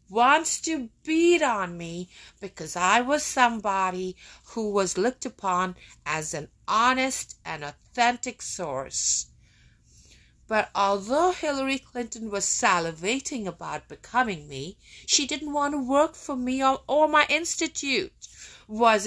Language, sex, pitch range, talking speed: English, female, 175-270 Hz, 125 wpm